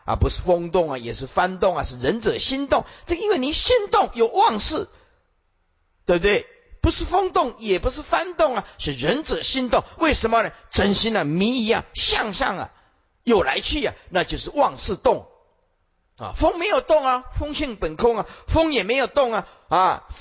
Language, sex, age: Chinese, male, 50-69